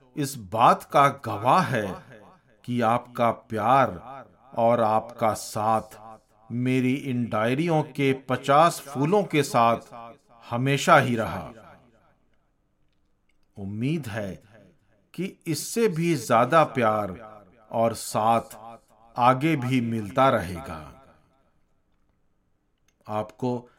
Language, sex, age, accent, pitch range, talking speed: Hindi, male, 50-69, native, 110-150 Hz, 90 wpm